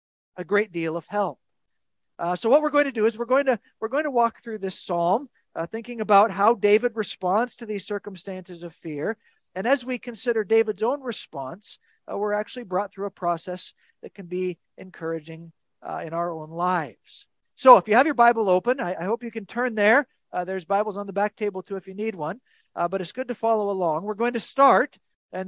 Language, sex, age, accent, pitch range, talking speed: English, male, 50-69, American, 180-235 Hz, 225 wpm